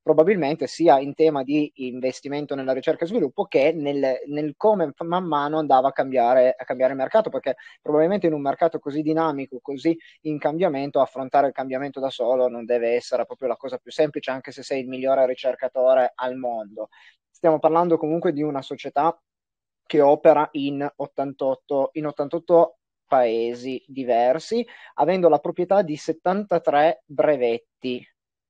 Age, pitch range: 20-39, 135-175 Hz